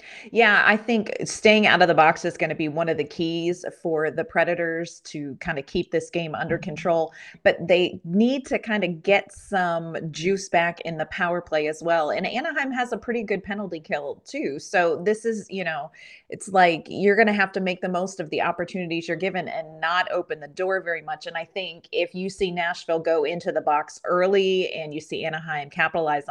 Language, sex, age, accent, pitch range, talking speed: English, female, 30-49, American, 160-195 Hz, 220 wpm